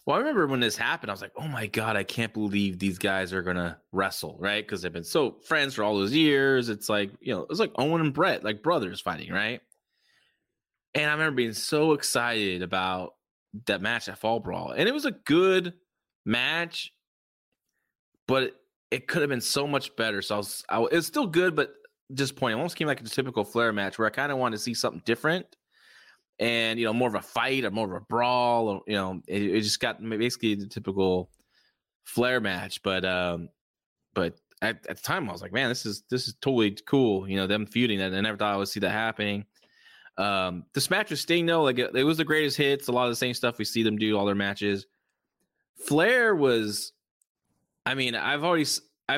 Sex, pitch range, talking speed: male, 100-135 Hz, 220 wpm